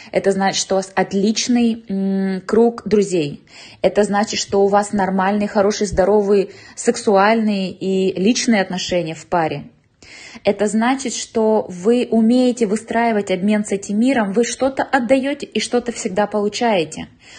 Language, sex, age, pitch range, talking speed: Russian, female, 20-39, 195-235 Hz, 135 wpm